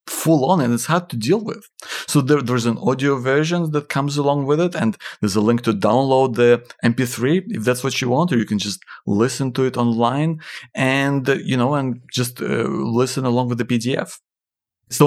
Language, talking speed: English, 205 wpm